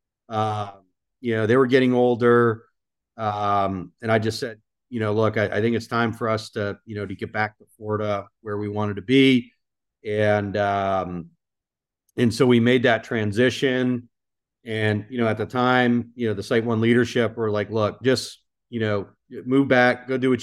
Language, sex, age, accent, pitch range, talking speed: English, male, 40-59, American, 105-125 Hz, 195 wpm